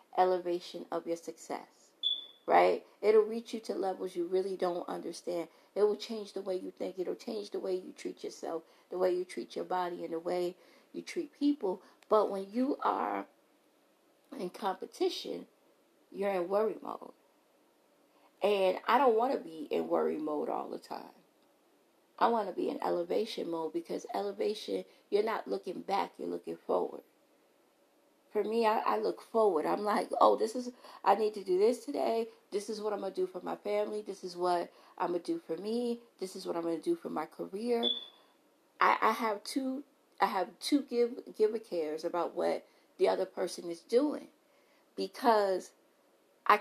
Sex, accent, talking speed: female, American, 180 wpm